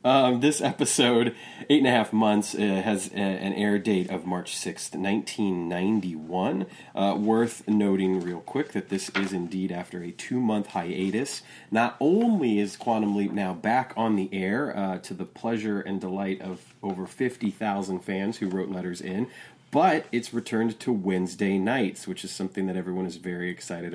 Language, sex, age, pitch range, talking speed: English, male, 30-49, 95-110 Hz, 170 wpm